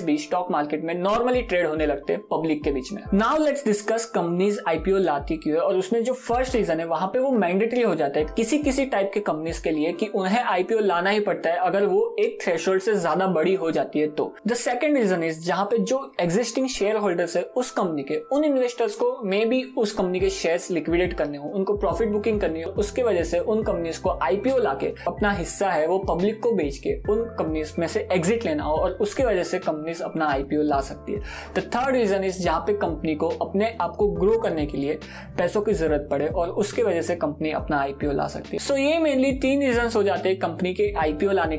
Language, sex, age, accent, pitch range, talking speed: Hindi, male, 20-39, native, 170-230 Hz, 130 wpm